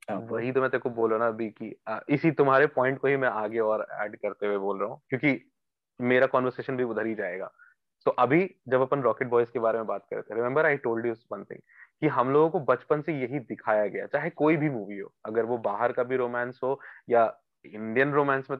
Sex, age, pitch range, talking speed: male, 20-39, 120-155 Hz, 105 wpm